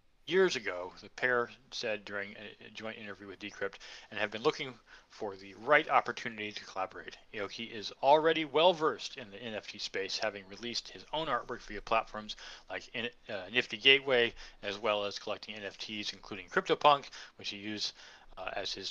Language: English